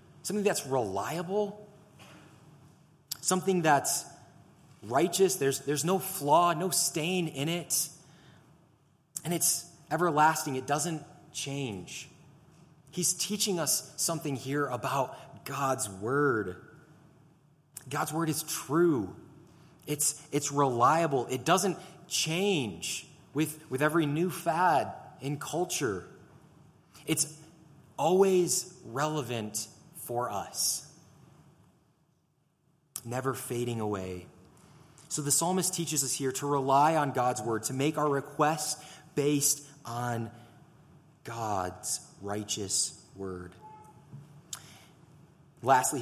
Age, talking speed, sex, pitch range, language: 30-49, 95 wpm, male, 135-160 Hz, English